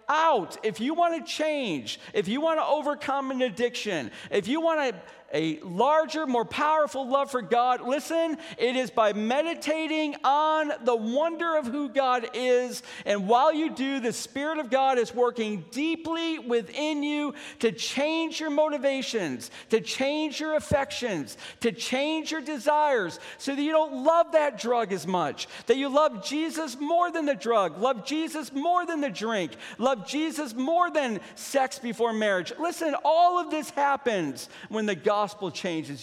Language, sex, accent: English, male, American